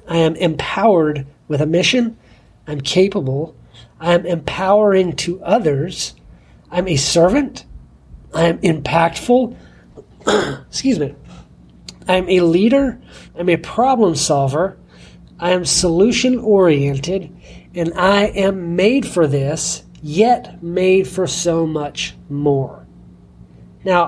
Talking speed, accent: 115 wpm, American